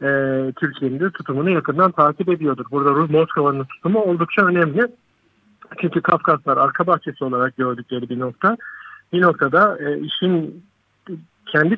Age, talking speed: 50-69, 115 wpm